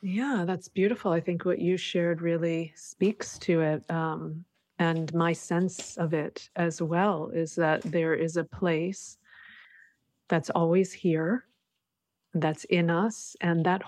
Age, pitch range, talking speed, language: 30-49, 165-195 Hz, 145 wpm, English